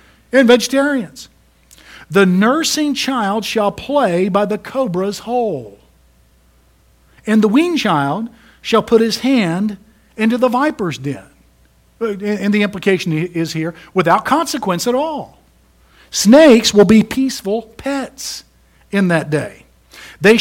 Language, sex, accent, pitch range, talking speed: English, male, American, 170-230 Hz, 120 wpm